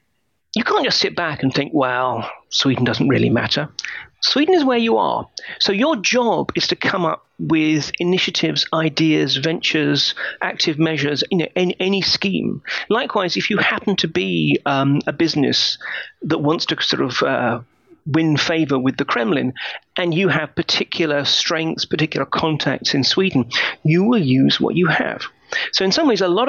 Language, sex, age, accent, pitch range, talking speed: Swedish, male, 40-59, British, 140-185 Hz, 170 wpm